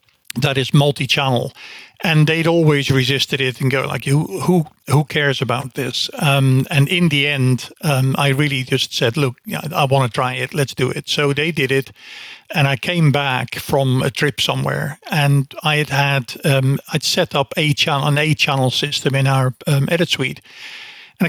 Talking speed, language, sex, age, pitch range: 195 wpm, English, male, 50-69, 135-160 Hz